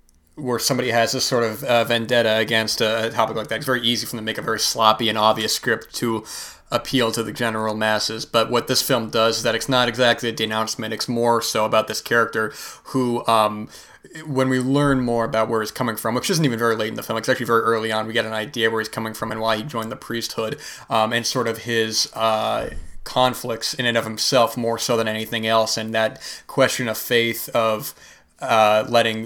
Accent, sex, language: American, male, English